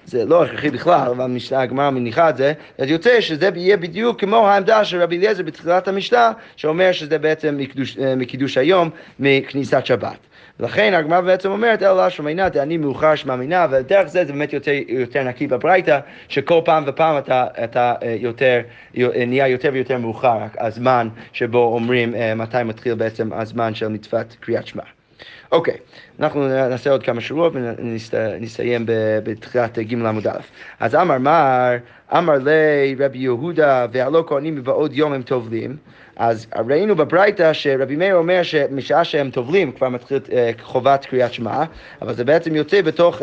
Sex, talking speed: male, 160 wpm